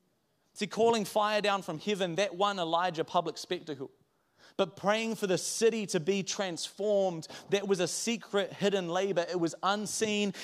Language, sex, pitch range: English, male, 165-200 Hz